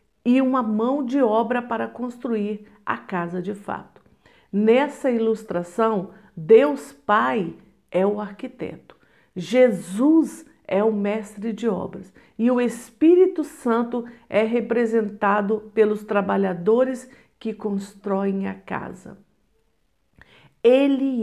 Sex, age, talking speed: female, 50-69, 105 wpm